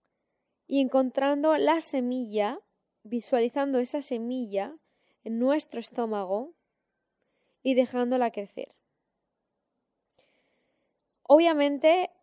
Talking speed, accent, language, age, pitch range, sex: 70 wpm, Spanish, Spanish, 10-29, 230-280 Hz, female